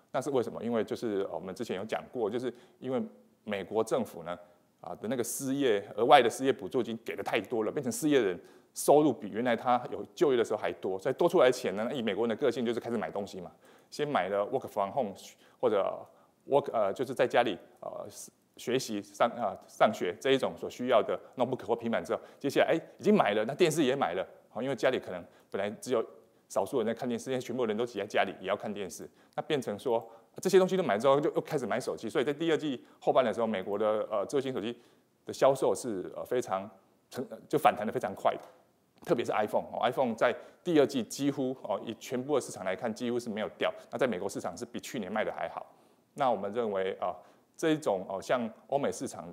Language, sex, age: Chinese, male, 20-39